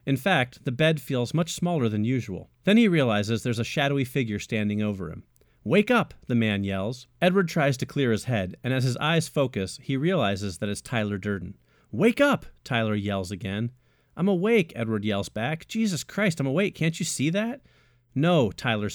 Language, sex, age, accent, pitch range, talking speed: English, male, 40-59, American, 110-155 Hz, 195 wpm